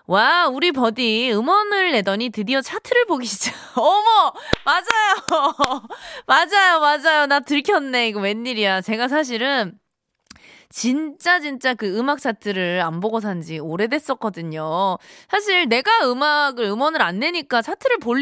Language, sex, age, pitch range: Korean, female, 20-39, 200-300 Hz